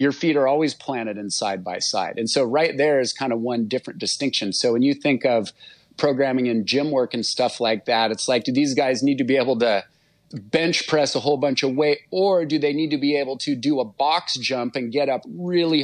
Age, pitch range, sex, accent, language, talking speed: 40-59, 125-150 Hz, male, American, English, 245 wpm